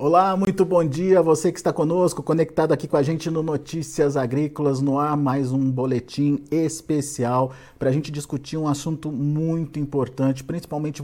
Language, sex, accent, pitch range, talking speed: Portuguese, male, Brazilian, 140-175 Hz, 170 wpm